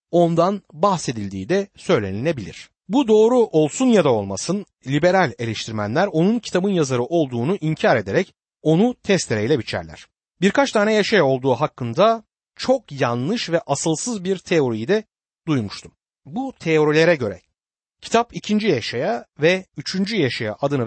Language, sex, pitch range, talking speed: Turkish, male, 130-205 Hz, 125 wpm